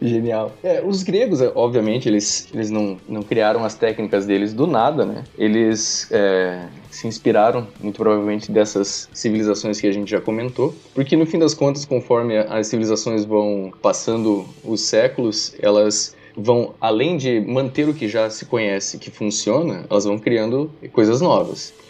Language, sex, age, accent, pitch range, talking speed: Portuguese, male, 20-39, Brazilian, 105-125 Hz, 155 wpm